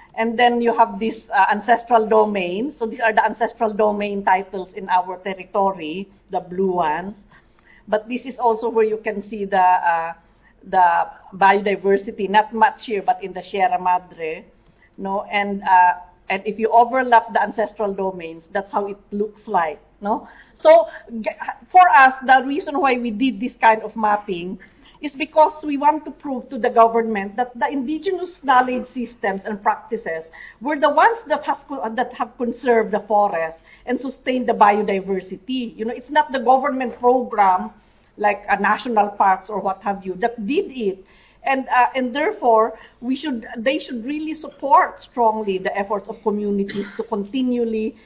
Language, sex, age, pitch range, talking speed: English, female, 50-69, 200-255 Hz, 170 wpm